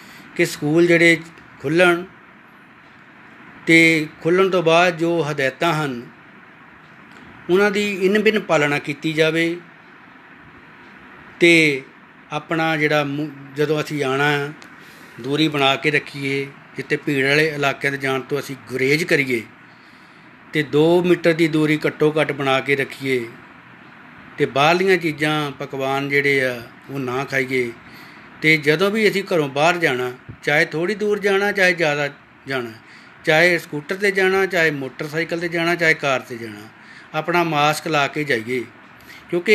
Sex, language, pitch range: male, Punjabi, 140-170 Hz